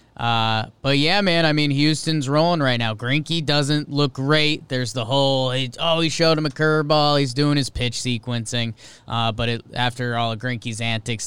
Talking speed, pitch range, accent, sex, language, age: 195 wpm, 115-140 Hz, American, male, English, 20-39